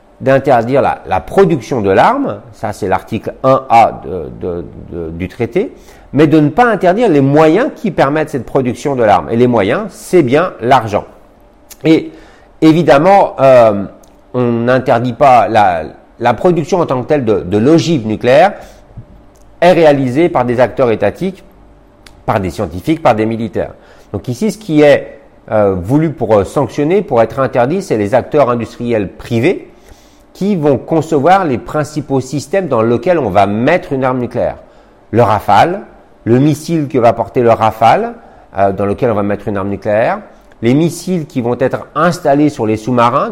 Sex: male